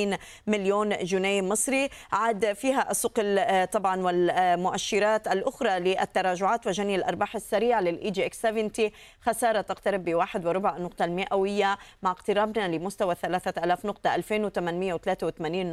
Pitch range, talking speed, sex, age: 175-210 Hz, 110 wpm, female, 20-39